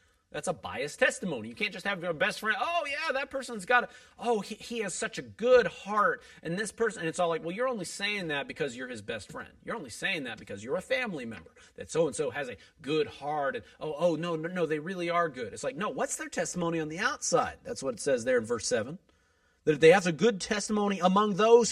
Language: English